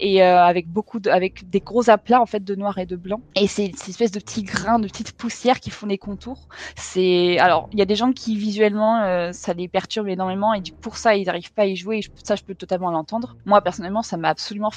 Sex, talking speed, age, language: female, 275 wpm, 20-39, French